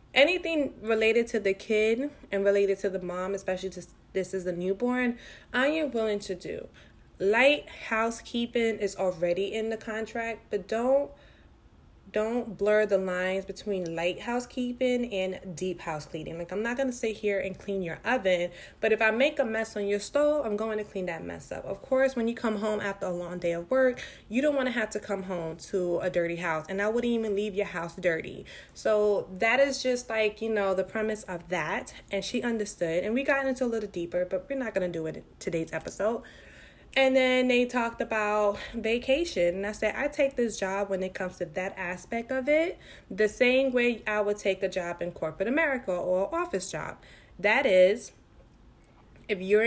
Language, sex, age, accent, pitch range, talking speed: English, female, 20-39, American, 190-240 Hz, 205 wpm